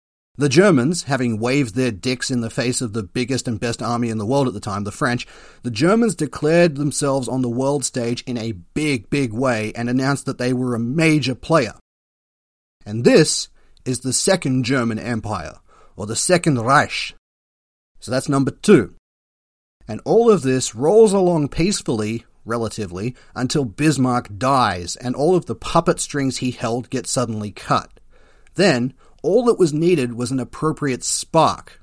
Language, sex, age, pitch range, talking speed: English, male, 40-59, 115-140 Hz, 170 wpm